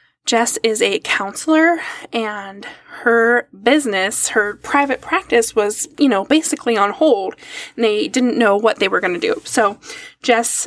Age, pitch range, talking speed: 10-29, 205-285 Hz, 155 wpm